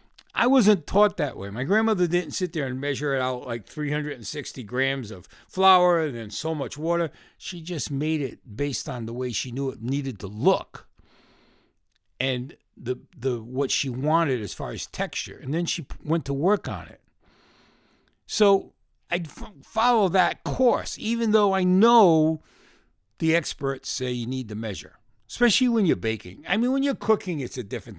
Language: English